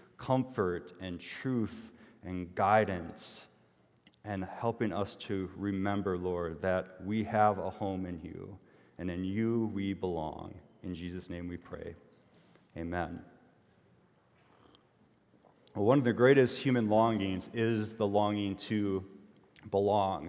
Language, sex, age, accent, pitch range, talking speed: English, male, 30-49, American, 105-125 Hz, 120 wpm